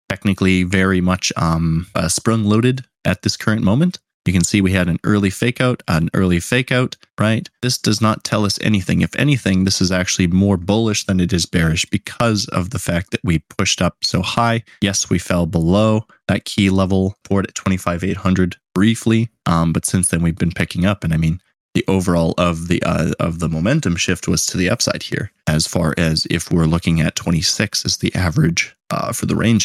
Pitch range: 85-115 Hz